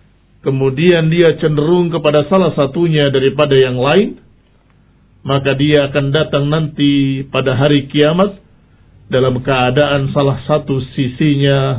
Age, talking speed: 50-69, 110 wpm